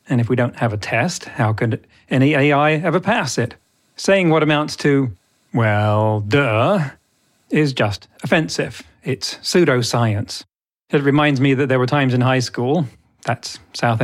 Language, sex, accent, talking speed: English, male, British, 160 wpm